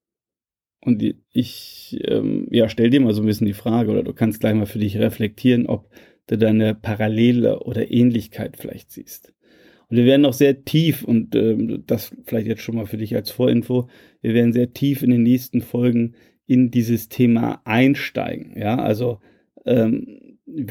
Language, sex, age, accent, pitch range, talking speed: German, male, 30-49, German, 115-125 Hz, 175 wpm